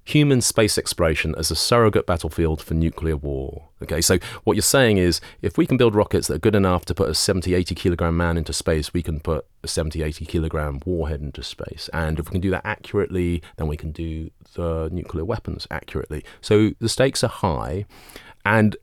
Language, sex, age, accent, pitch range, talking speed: English, male, 30-49, British, 80-110 Hz, 205 wpm